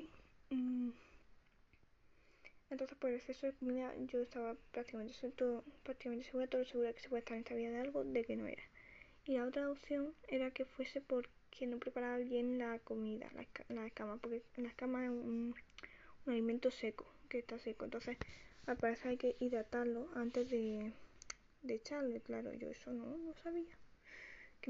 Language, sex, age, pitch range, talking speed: Spanish, female, 10-29, 230-260 Hz, 175 wpm